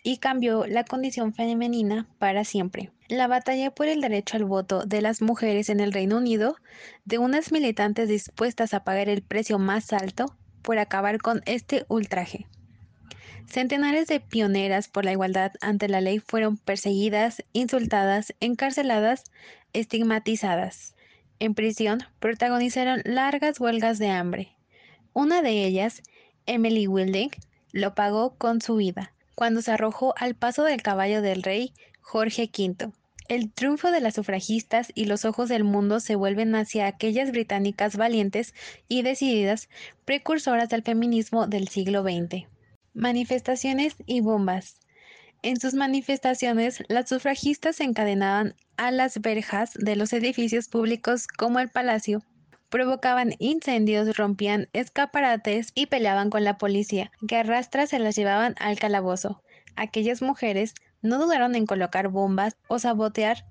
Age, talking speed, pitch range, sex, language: 20-39, 140 wpm, 205-245 Hz, female, Spanish